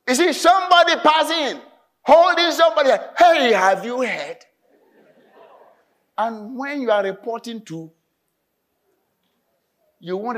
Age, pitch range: 60-79, 170-285 Hz